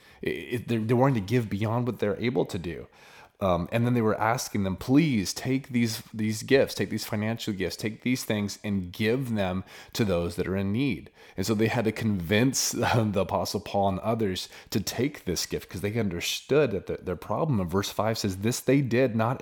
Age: 30-49